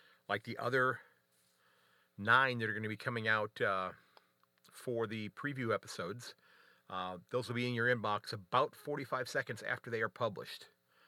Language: English